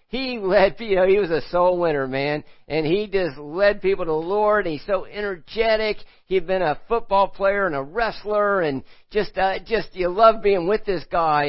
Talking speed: 205 wpm